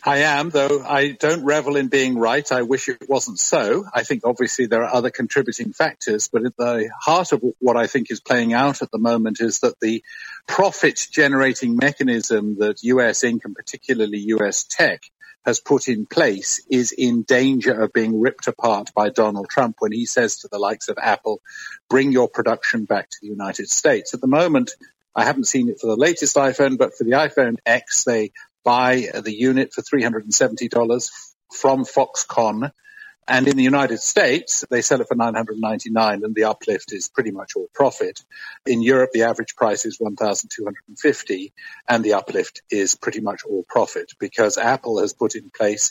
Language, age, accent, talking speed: English, 50-69, British, 185 wpm